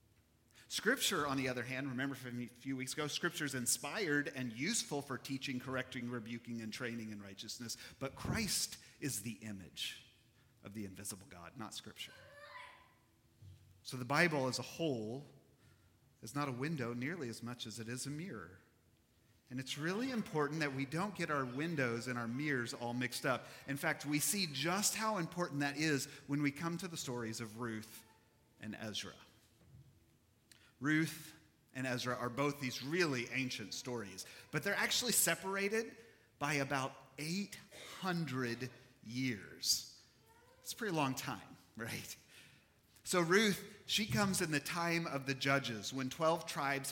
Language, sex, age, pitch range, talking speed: English, male, 40-59, 120-165 Hz, 160 wpm